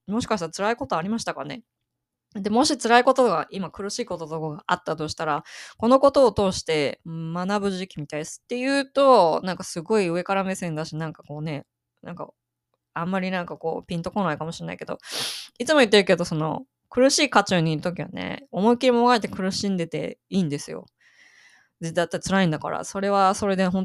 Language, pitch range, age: Japanese, 165-220 Hz, 20-39